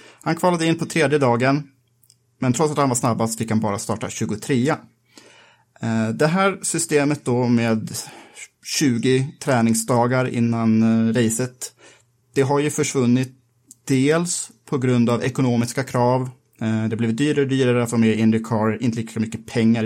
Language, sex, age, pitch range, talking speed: Swedish, male, 30-49, 115-130 Hz, 140 wpm